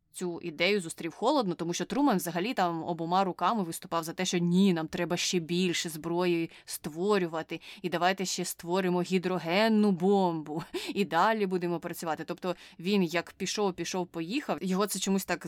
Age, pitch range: 20-39, 170-200 Hz